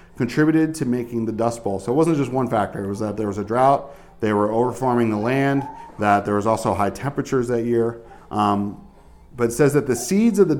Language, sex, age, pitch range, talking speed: English, male, 40-59, 105-140 Hz, 230 wpm